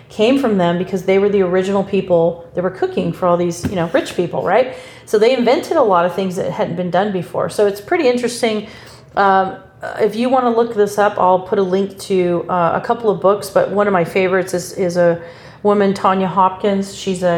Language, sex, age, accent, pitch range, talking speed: English, female, 40-59, American, 180-210 Hz, 230 wpm